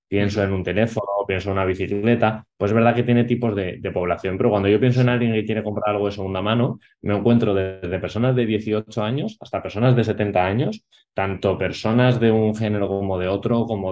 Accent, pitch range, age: Spanish, 100-120 Hz, 20-39